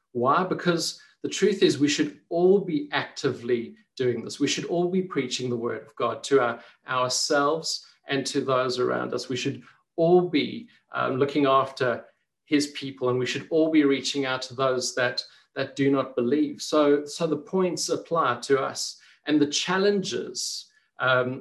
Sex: male